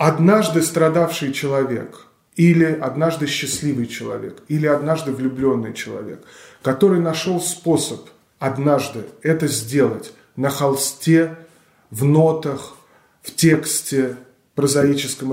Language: Russian